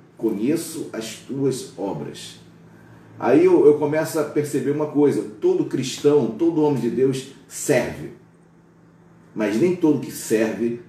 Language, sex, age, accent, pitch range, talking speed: Portuguese, male, 40-59, Brazilian, 120-170 Hz, 130 wpm